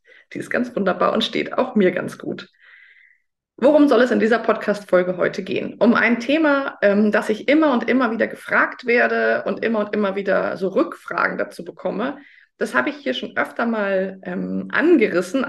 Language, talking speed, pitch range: German, 185 wpm, 195-235 Hz